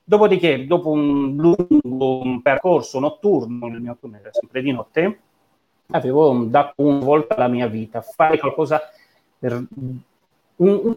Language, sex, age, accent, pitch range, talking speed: Italian, male, 30-49, native, 115-150 Hz, 120 wpm